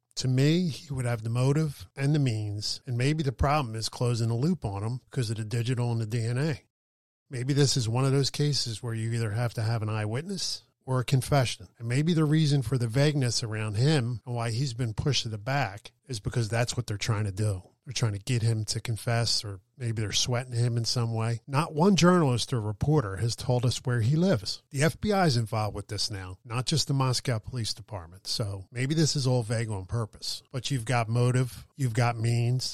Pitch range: 115-135 Hz